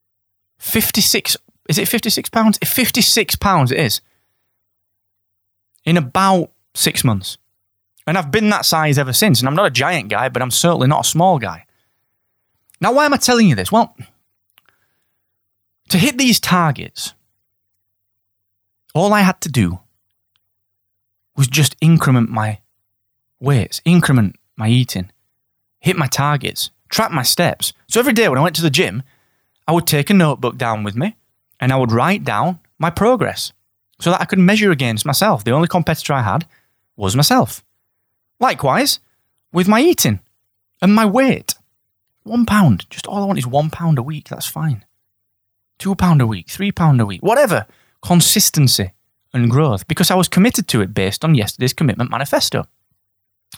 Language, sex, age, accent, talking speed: English, male, 20-39, British, 160 wpm